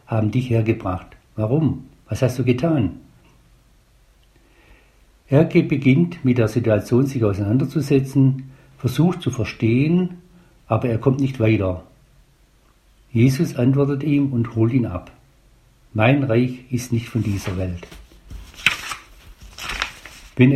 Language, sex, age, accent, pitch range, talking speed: German, male, 60-79, German, 110-135 Hz, 110 wpm